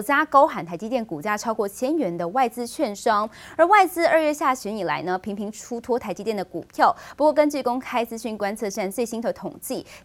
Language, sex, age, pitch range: Chinese, female, 20-39, 195-275 Hz